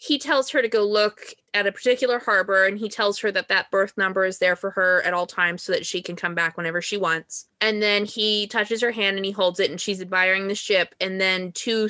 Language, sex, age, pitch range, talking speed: English, female, 20-39, 180-215 Hz, 260 wpm